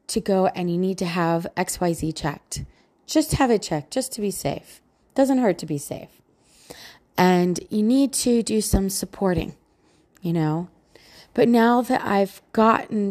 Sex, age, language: female, 30-49, English